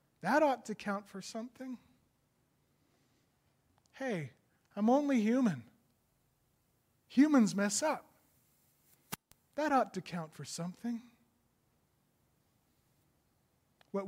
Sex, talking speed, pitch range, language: male, 85 wpm, 205-260 Hz, English